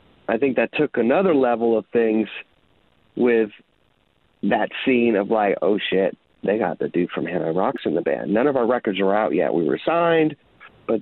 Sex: male